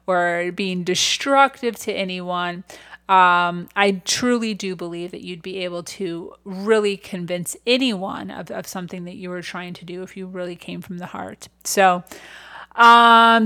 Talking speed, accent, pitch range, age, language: 160 wpm, American, 180-220 Hz, 30-49, English